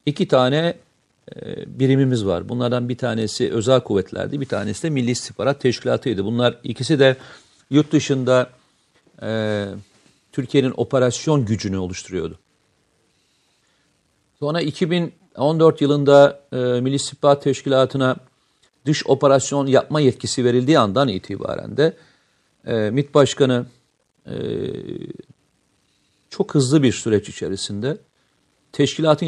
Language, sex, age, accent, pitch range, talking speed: Turkish, male, 50-69, native, 120-145 Hz, 105 wpm